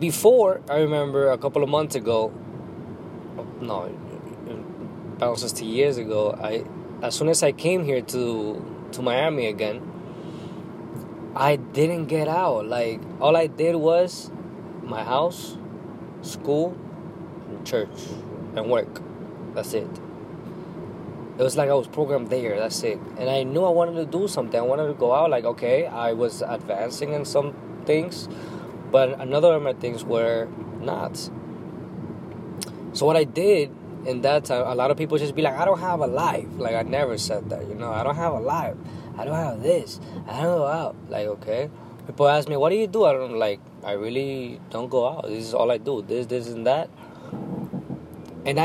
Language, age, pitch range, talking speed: English, 20-39, 125-165 Hz, 180 wpm